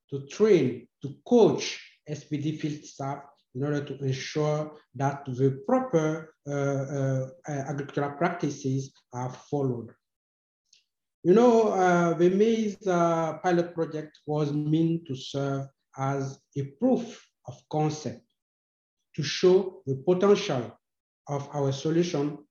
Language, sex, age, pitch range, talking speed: English, male, 50-69, 135-165 Hz, 115 wpm